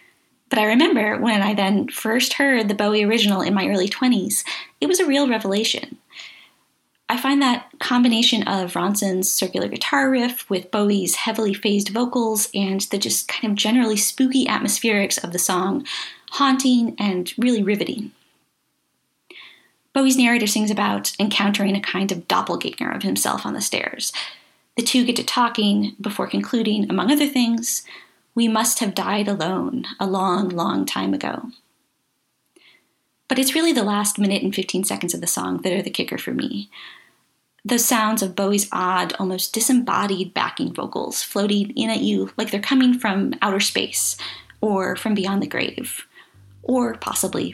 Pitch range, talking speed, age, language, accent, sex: 195-245 Hz, 160 wpm, 20-39, English, American, female